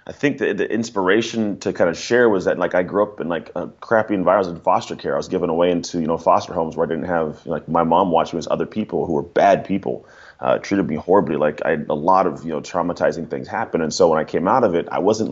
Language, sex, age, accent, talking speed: English, male, 30-49, American, 280 wpm